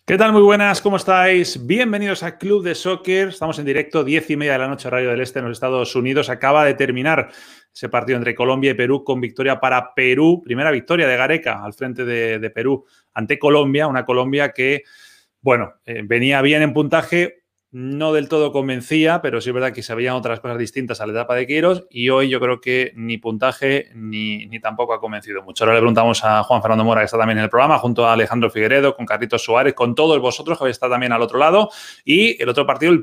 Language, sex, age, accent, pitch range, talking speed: Spanish, male, 30-49, Spanish, 115-145 Hz, 230 wpm